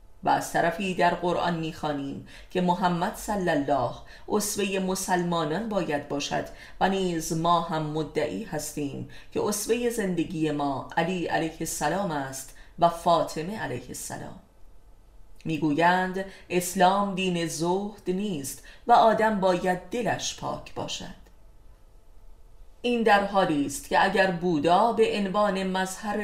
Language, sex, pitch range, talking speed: Persian, female, 145-195 Hz, 120 wpm